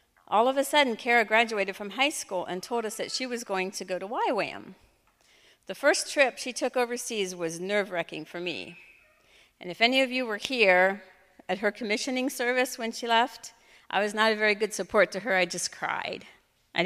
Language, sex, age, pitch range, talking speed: English, female, 50-69, 185-245 Hz, 205 wpm